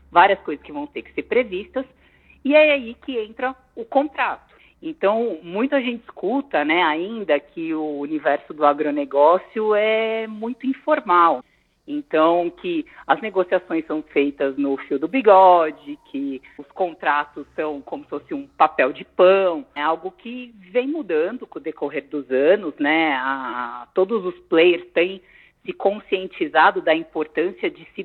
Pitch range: 165-255 Hz